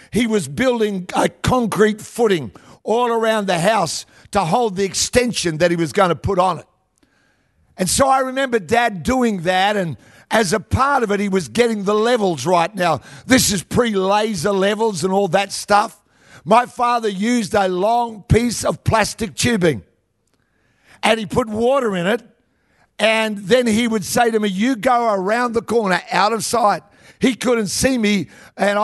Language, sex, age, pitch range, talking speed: English, male, 50-69, 195-240 Hz, 175 wpm